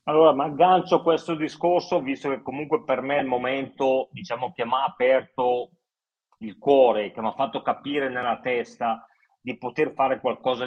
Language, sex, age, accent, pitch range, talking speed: Italian, male, 40-59, native, 120-150 Hz, 180 wpm